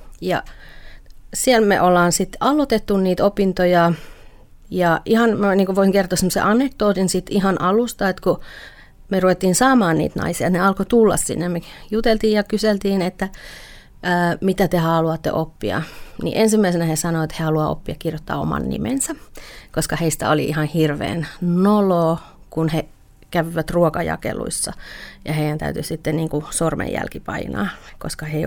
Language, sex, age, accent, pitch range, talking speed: Finnish, female, 30-49, native, 160-200 Hz, 145 wpm